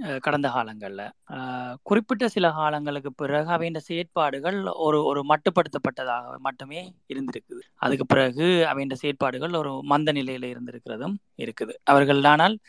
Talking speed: 105 wpm